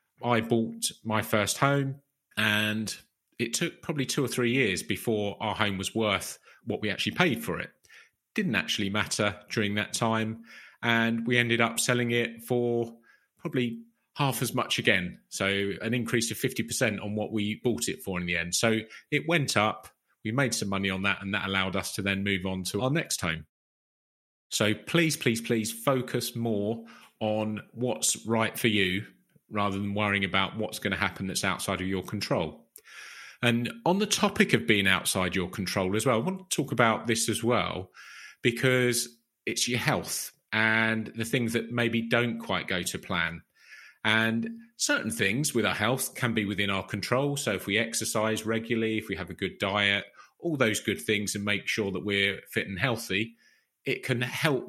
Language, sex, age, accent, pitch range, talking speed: English, male, 30-49, British, 100-120 Hz, 190 wpm